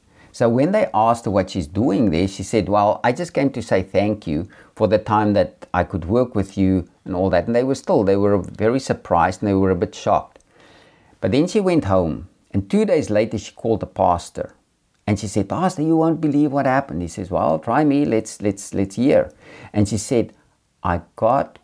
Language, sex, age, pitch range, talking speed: English, male, 50-69, 95-125 Hz, 220 wpm